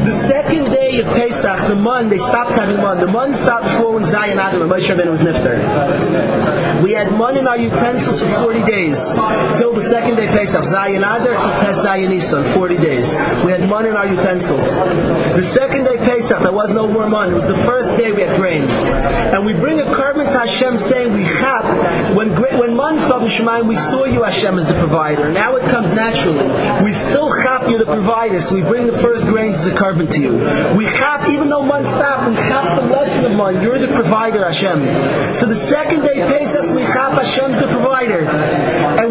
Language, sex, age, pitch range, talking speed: English, male, 30-49, 195-260 Hz, 205 wpm